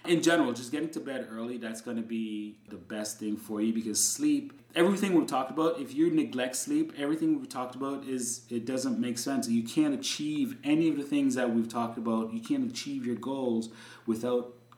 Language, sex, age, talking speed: English, male, 30-49, 210 wpm